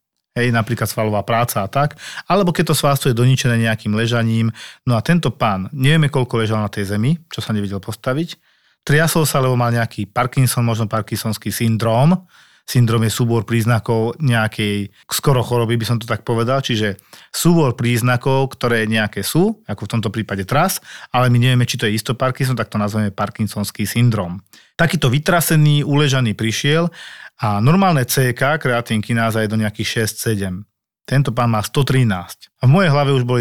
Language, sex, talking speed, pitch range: Slovak, male, 170 wpm, 110-140 Hz